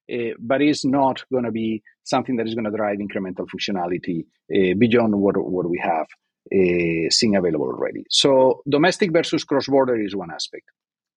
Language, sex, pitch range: English, male, 110-165 Hz